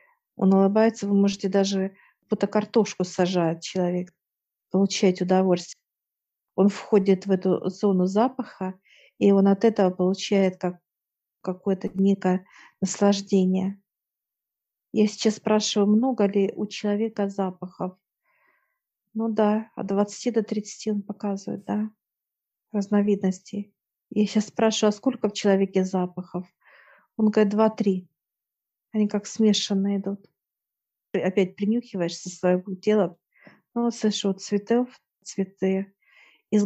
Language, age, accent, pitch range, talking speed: Russian, 50-69, native, 190-215 Hz, 115 wpm